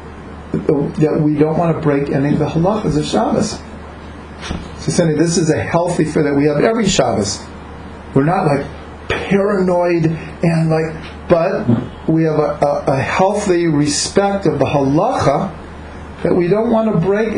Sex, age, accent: male, 40-59, American